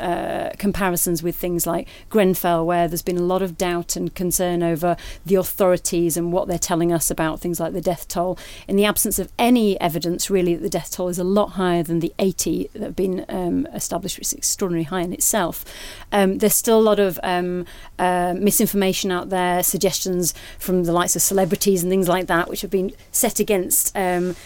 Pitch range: 175-205 Hz